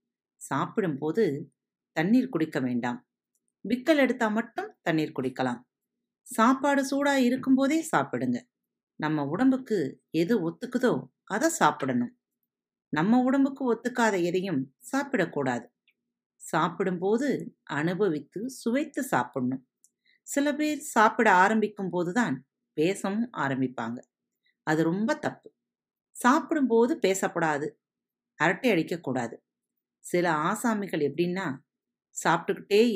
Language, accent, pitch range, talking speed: Tamil, native, 145-240 Hz, 85 wpm